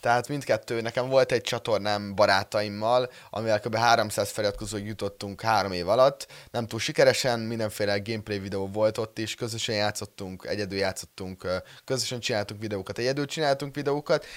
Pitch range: 105-130 Hz